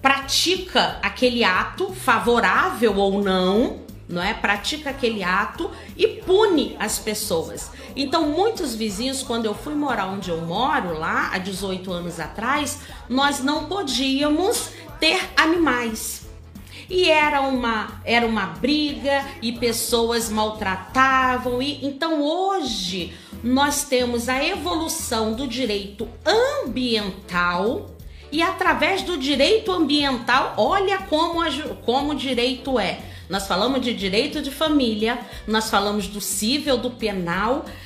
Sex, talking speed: female, 115 wpm